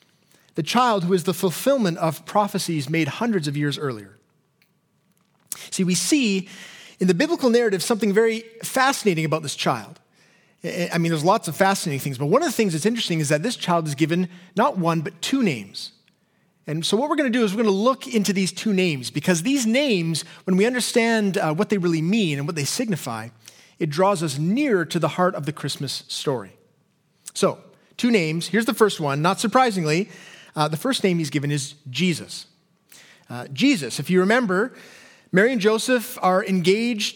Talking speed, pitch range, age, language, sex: 195 wpm, 155-210 Hz, 30-49, English, male